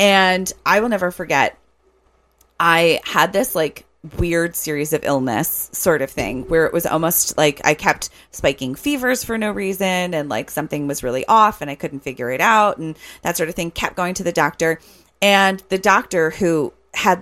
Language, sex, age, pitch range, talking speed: English, female, 30-49, 145-190 Hz, 190 wpm